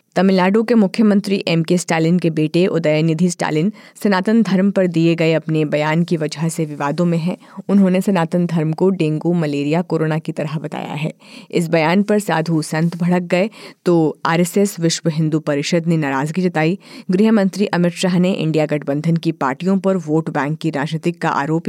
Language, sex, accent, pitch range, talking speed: Hindi, female, native, 155-190 Hz, 175 wpm